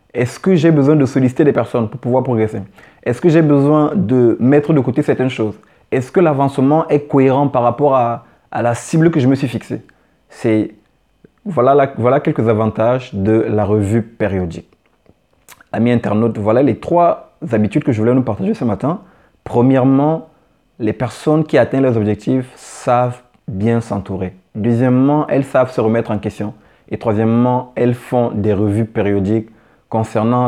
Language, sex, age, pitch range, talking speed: French, male, 30-49, 110-130 Hz, 165 wpm